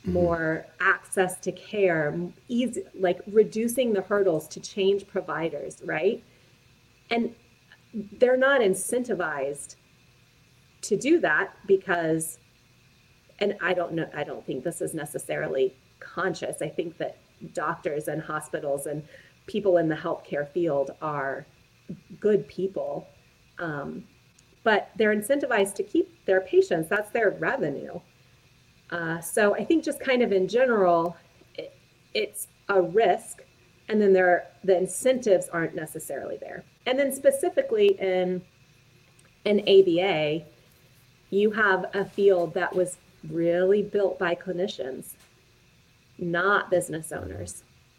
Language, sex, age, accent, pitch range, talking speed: English, female, 30-49, American, 160-205 Hz, 125 wpm